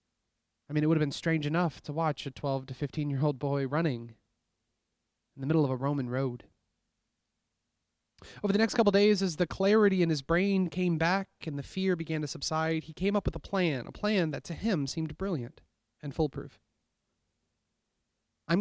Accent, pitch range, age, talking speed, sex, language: American, 130-170 Hz, 30-49, 185 wpm, male, English